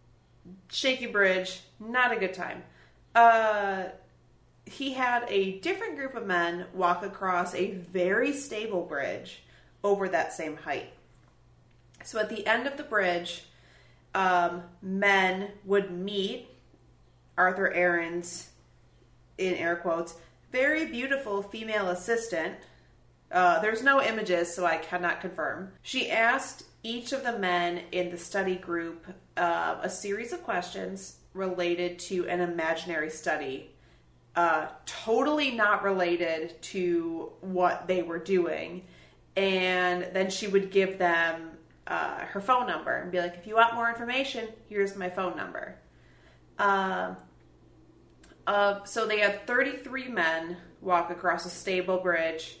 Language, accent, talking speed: English, American, 130 wpm